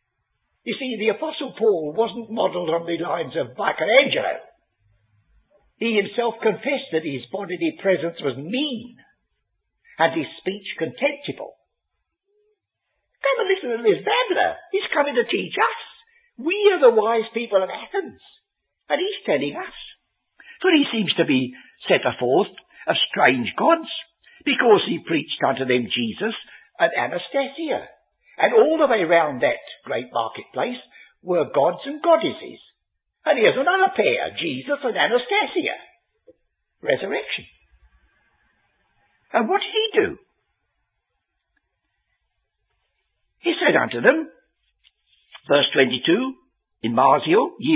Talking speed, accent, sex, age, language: 125 wpm, British, male, 60-79, English